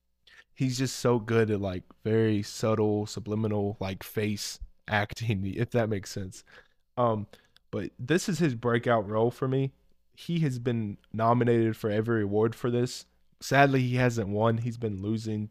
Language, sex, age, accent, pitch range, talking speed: English, male, 20-39, American, 105-125 Hz, 160 wpm